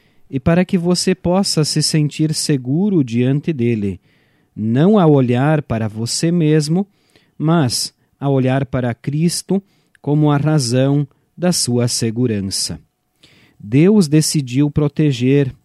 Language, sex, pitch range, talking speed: Portuguese, male, 125-165 Hz, 115 wpm